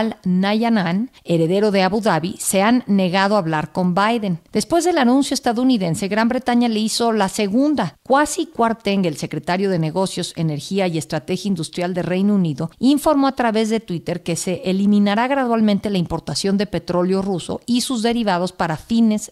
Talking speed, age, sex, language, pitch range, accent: 170 wpm, 50-69, female, Spanish, 175-225 Hz, Mexican